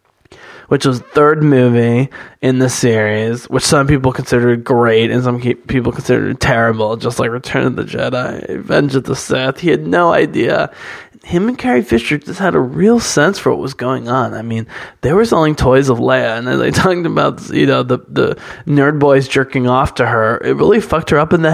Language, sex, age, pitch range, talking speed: English, male, 20-39, 125-150 Hz, 210 wpm